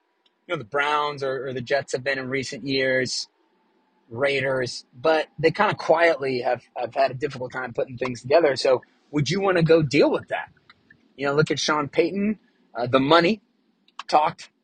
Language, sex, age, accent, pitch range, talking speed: English, male, 30-49, American, 130-170 Hz, 185 wpm